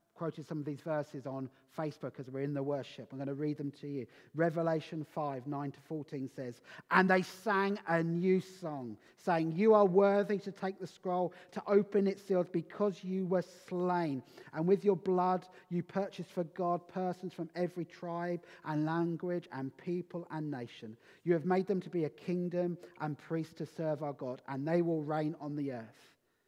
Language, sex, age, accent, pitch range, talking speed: English, male, 40-59, British, 150-200 Hz, 195 wpm